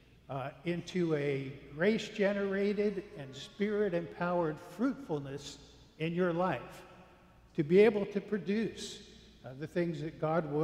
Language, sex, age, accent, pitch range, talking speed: English, male, 60-79, American, 145-195 Hz, 115 wpm